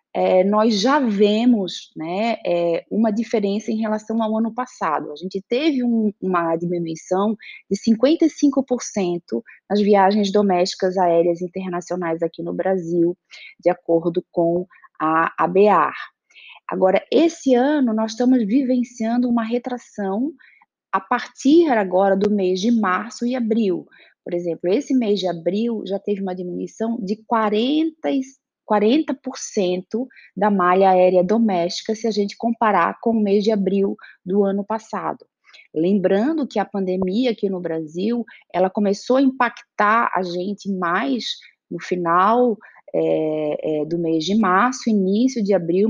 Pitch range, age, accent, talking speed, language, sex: 185-235 Hz, 20-39, Brazilian, 135 wpm, Portuguese, female